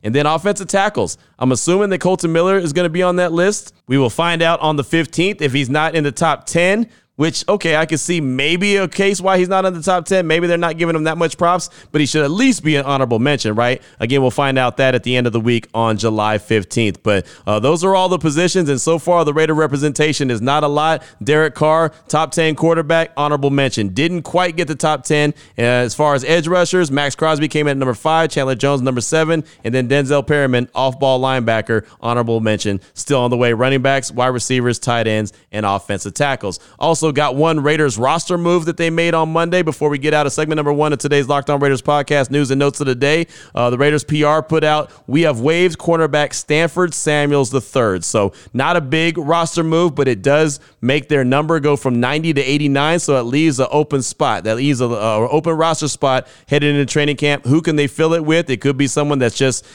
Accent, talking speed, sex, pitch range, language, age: American, 235 wpm, male, 130-165 Hz, English, 30-49